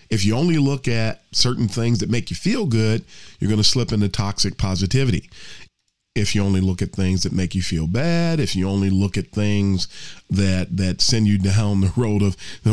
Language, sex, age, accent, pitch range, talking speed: English, male, 40-59, American, 100-135 Hz, 210 wpm